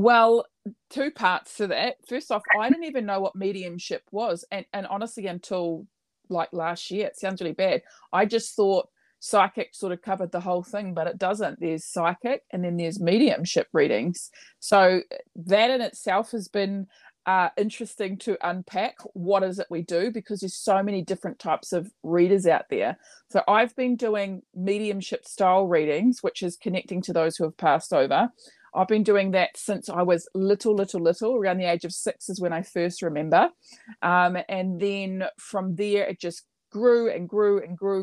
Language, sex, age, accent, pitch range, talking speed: English, female, 20-39, Australian, 175-210 Hz, 185 wpm